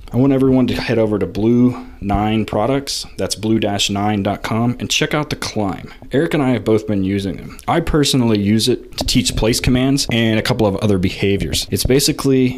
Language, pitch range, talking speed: English, 100-125 Hz, 185 wpm